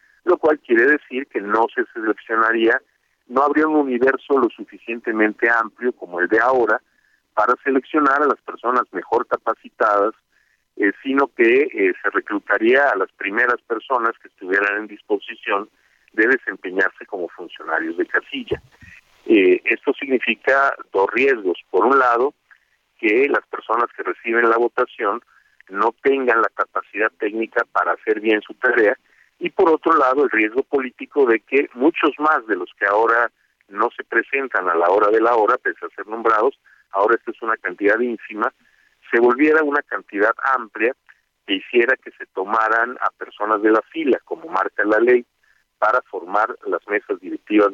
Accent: Mexican